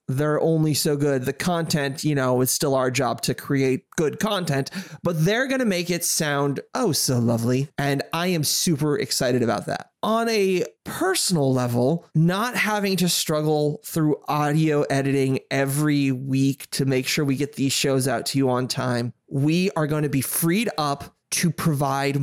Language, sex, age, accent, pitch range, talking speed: English, male, 20-39, American, 140-185 Hz, 180 wpm